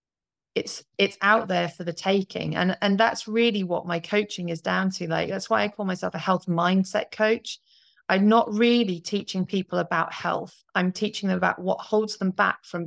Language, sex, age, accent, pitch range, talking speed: English, female, 30-49, British, 175-210 Hz, 200 wpm